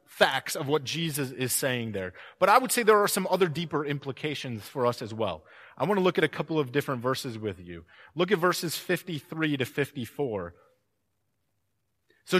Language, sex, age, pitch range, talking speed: English, male, 30-49, 130-185 Hz, 195 wpm